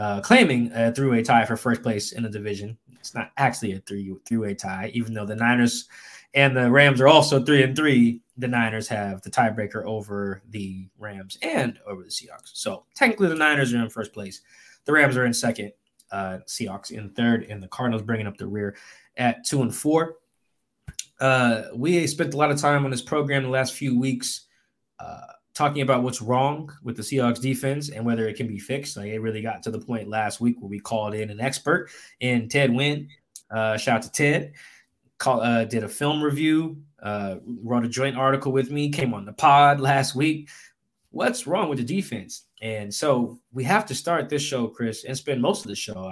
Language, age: English, 20-39